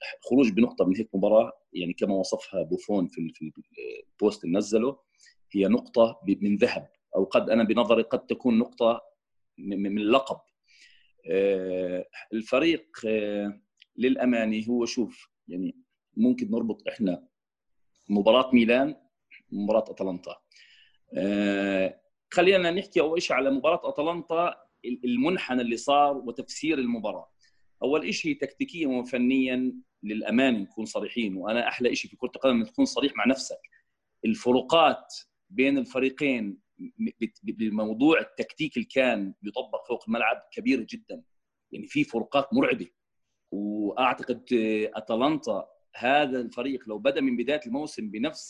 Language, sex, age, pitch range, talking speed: Arabic, male, 40-59, 110-180 Hz, 120 wpm